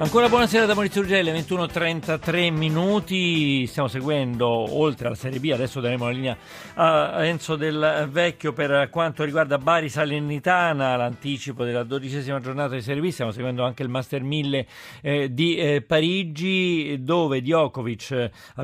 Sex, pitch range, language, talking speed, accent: male, 125-160 Hz, Italian, 150 wpm, native